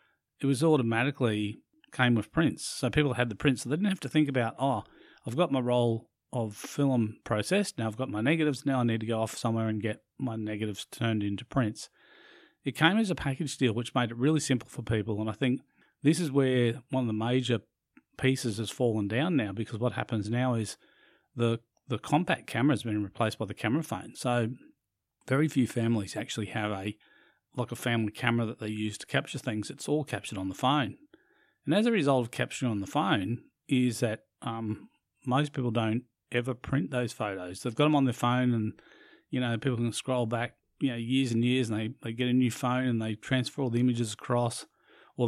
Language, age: English, 40-59